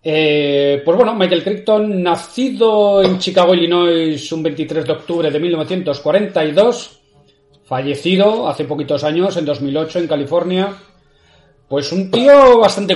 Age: 30-49